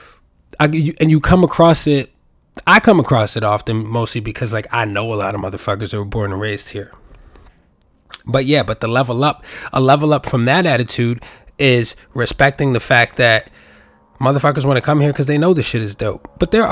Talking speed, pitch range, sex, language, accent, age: 205 wpm, 115-155 Hz, male, English, American, 20-39